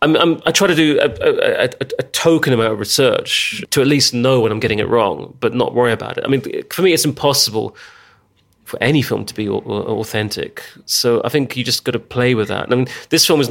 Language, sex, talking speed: English, male, 255 wpm